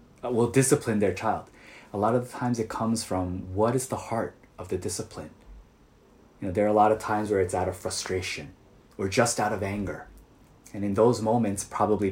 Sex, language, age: male, Korean, 20-39